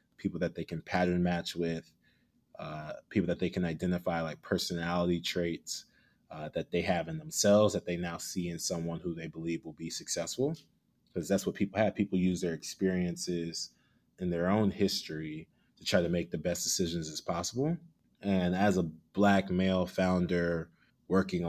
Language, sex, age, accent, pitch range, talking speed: English, male, 20-39, American, 85-100 Hz, 175 wpm